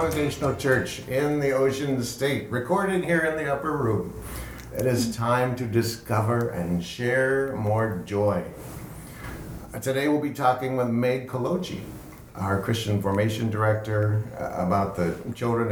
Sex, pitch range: male, 100-130 Hz